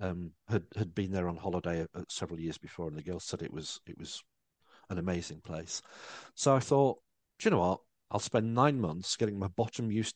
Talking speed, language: 215 wpm, English